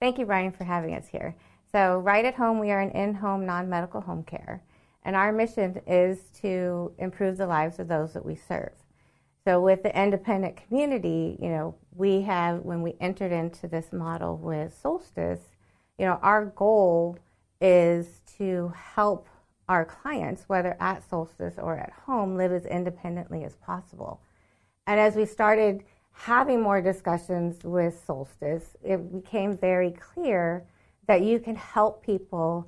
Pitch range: 170-205 Hz